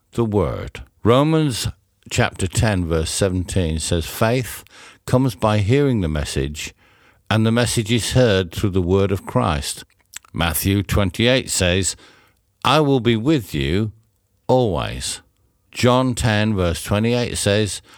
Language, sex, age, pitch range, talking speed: English, male, 60-79, 85-110 Hz, 125 wpm